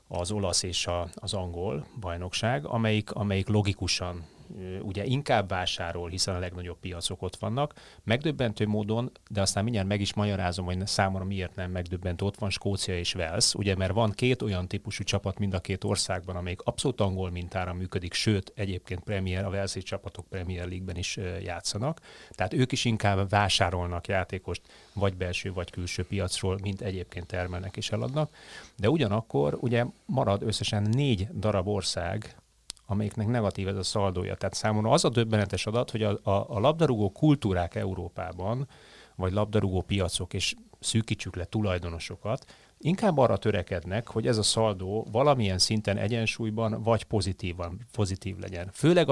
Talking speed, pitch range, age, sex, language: 155 wpm, 90-110 Hz, 30-49, male, Hungarian